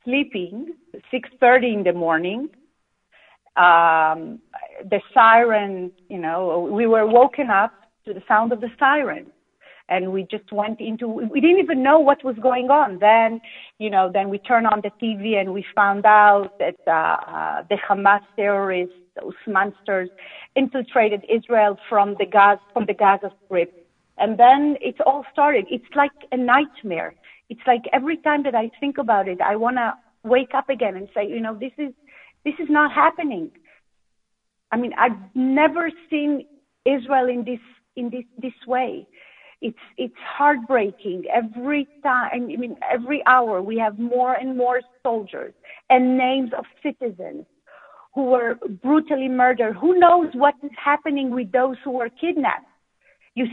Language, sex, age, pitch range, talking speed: English, female, 40-59, 205-285 Hz, 155 wpm